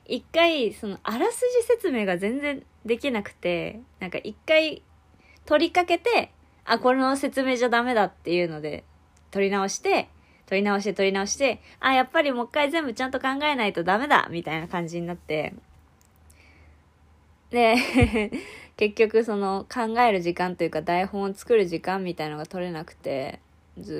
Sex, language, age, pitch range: female, Japanese, 20-39, 170-255 Hz